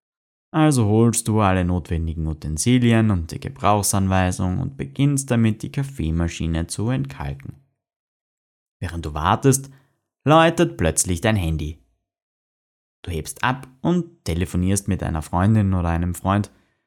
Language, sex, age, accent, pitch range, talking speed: German, male, 20-39, German, 85-115 Hz, 120 wpm